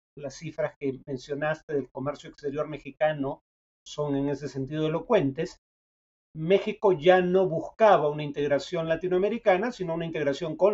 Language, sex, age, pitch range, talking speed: Spanish, male, 40-59, 145-185 Hz, 135 wpm